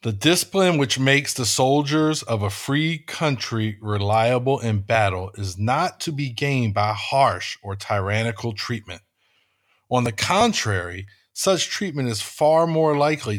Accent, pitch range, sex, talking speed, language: American, 105-150 Hz, male, 145 wpm, English